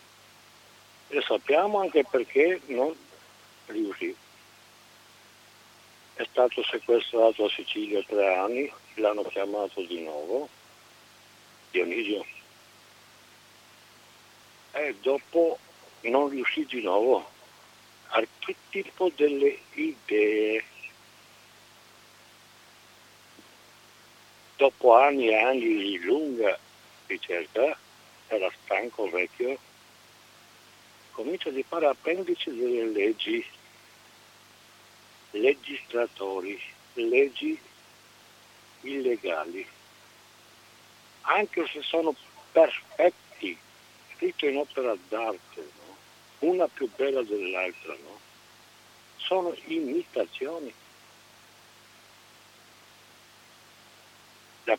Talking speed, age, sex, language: 70 wpm, 60-79, male, Italian